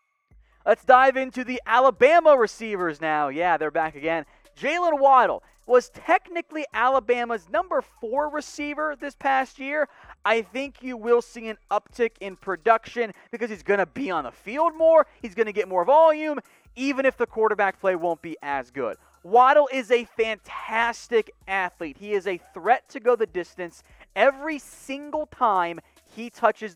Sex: male